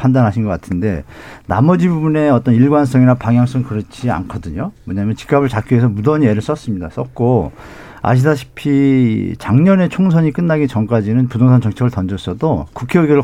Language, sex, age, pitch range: Korean, male, 50-69, 105-135 Hz